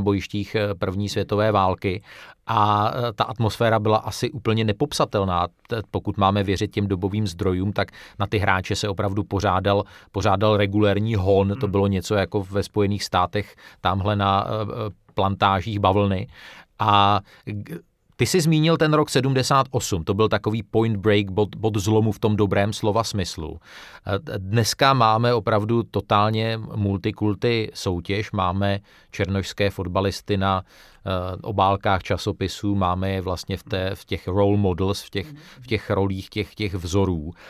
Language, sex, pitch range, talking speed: Czech, male, 100-120 Hz, 135 wpm